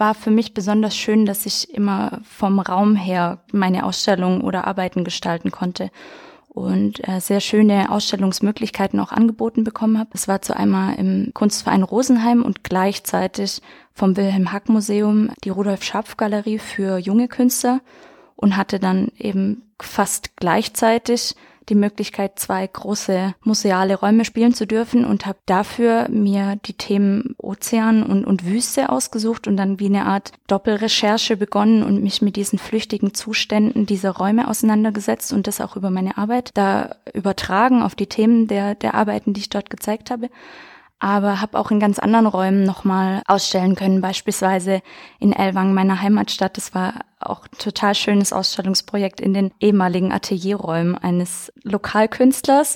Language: German